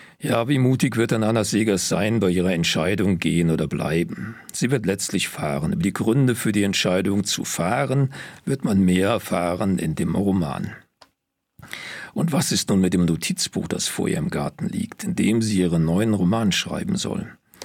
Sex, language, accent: male, German, German